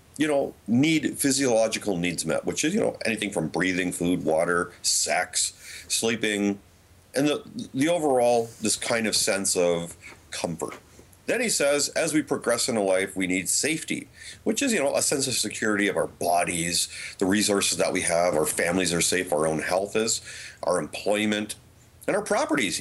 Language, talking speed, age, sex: English, 180 wpm, 40-59, male